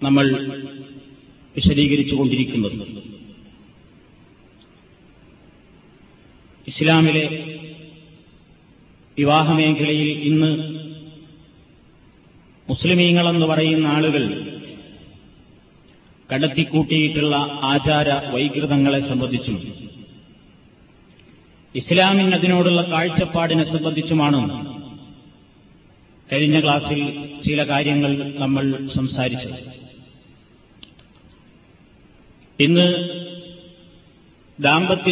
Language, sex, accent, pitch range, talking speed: Malayalam, male, native, 145-180 Hz, 40 wpm